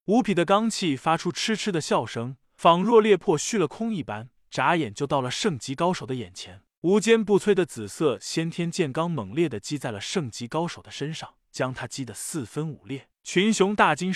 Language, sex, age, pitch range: Chinese, male, 20-39, 145-195 Hz